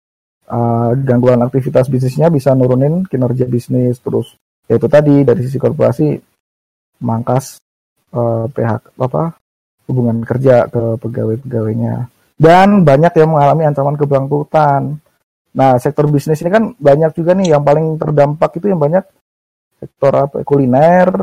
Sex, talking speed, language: male, 125 wpm, Indonesian